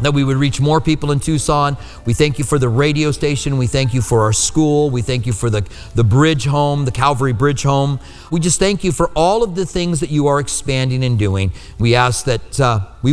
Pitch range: 125-175 Hz